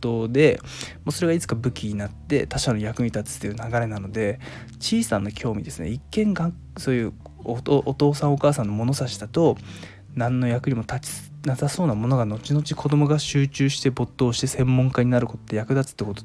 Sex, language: male, Japanese